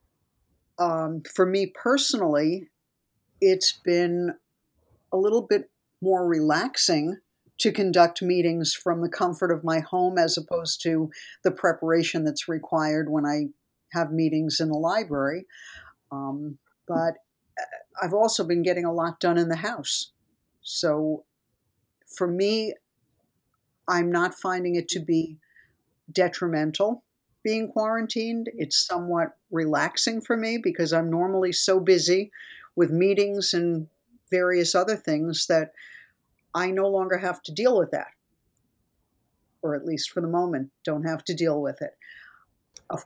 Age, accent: 50-69, American